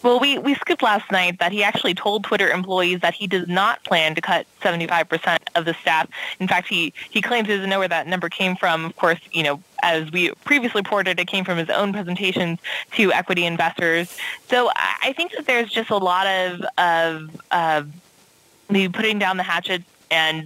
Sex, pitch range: female, 170-210 Hz